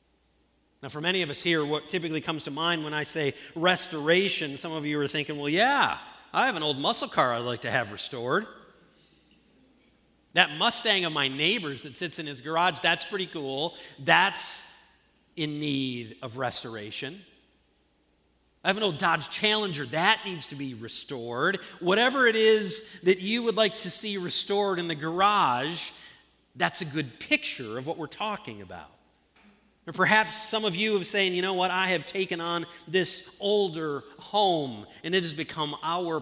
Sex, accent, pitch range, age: male, American, 125-185 Hz, 40-59